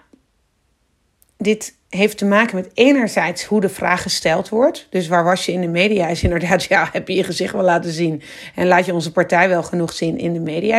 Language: Dutch